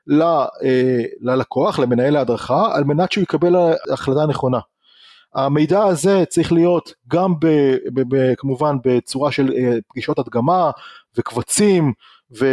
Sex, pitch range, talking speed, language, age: male, 140-195 Hz, 125 wpm, Hebrew, 30-49